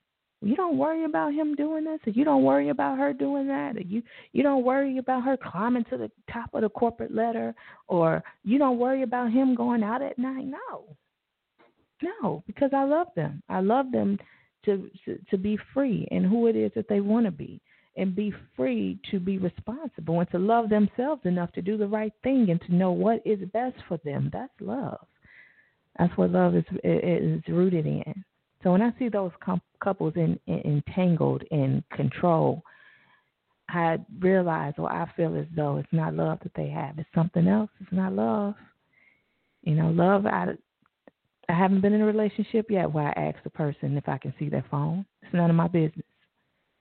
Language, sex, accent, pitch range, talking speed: English, female, American, 160-230 Hz, 200 wpm